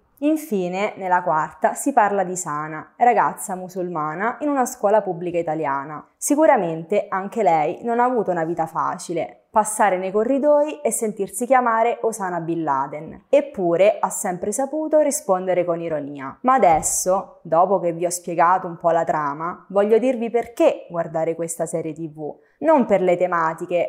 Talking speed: 155 wpm